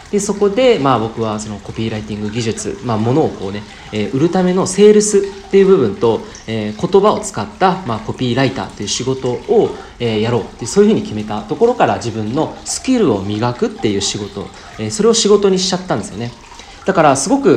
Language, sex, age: Japanese, male, 40-59